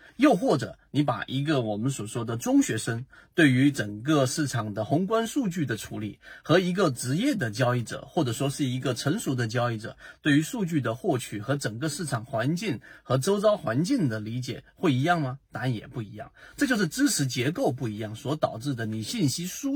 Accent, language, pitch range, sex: native, Chinese, 115-155 Hz, male